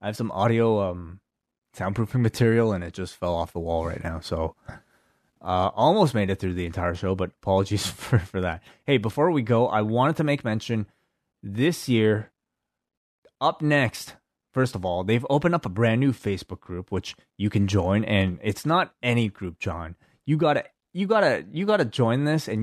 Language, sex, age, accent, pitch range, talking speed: English, male, 20-39, American, 95-125 Hz, 195 wpm